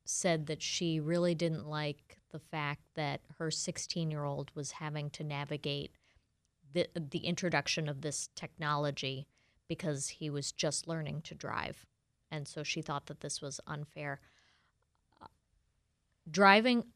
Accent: American